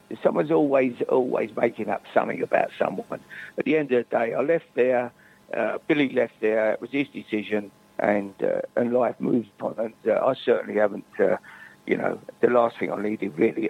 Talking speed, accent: 195 wpm, British